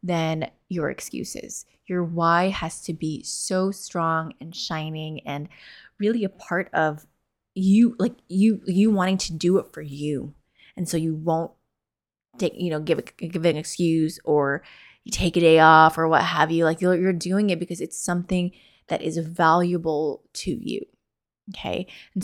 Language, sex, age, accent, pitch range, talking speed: English, female, 20-39, American, 160-185 Hz, 175 wpm